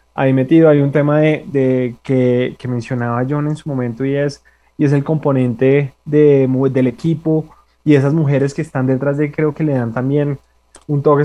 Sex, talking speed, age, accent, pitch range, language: male, 195 wpm, 20-39, Colombian, 130-155 Hz, Spanish